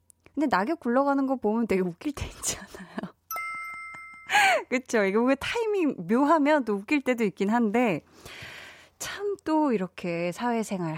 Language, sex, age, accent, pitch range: Korean, female, 20-39, native, 185-270 Hz